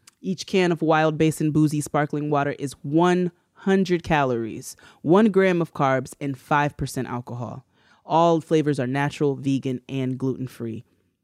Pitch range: 135-175 Hz